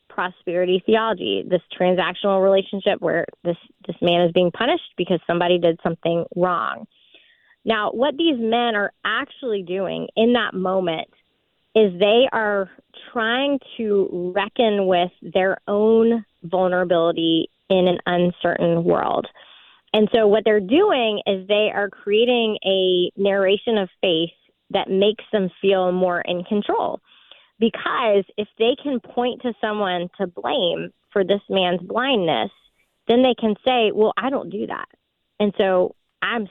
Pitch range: 185-230 Hz